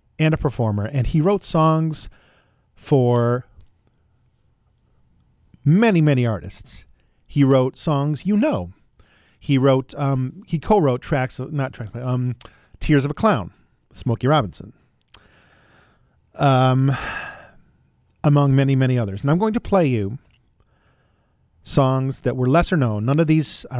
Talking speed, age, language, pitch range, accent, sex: 130 wpm, 40-59, English, 115-150 Hz, American, male